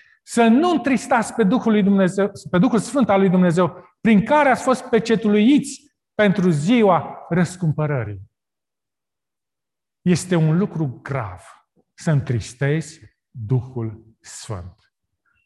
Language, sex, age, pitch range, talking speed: Romanian, male, 40-59, 140-225 Hz, 110 wpm